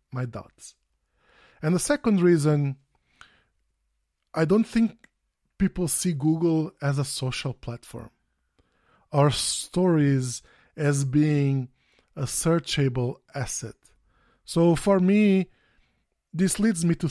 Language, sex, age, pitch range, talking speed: English, male, 20-39, 130-160 Hz, 105 wpm